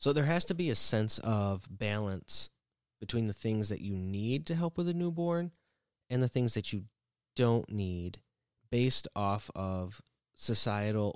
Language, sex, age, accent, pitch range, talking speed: English, male, 20-39, American, 100-130 Hz, 165 wpm